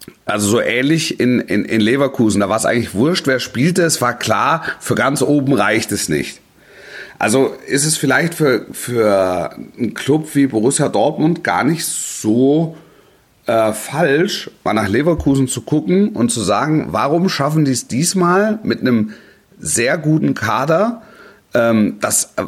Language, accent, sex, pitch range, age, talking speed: German, German, male, 110-160 Hz, 40-59, 155 wpm